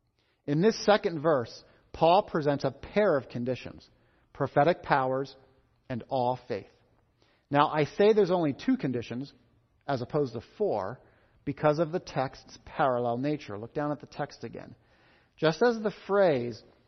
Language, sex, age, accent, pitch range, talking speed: English, male, 40-59, American, 125-180 Hz, 150 wpm